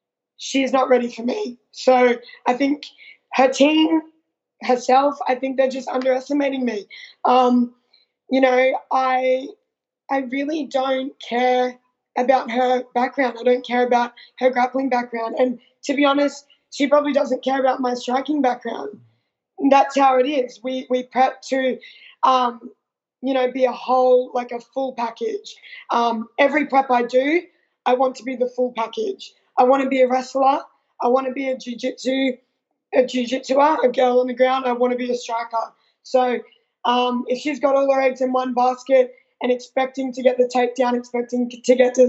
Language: English